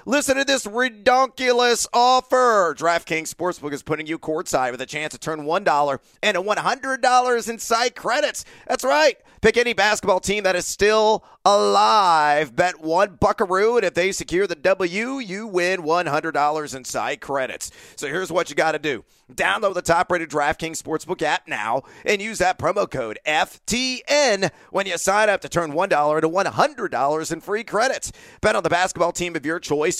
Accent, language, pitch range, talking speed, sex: American, English, 150-225 Hz, 175 wpm, male